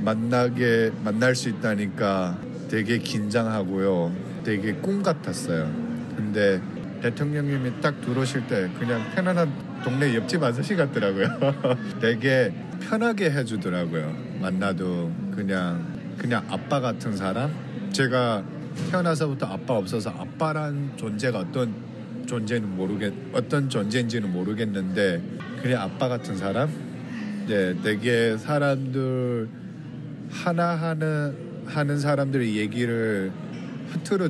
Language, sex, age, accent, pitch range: Korean, male, 40-59, native, 105-140 Hz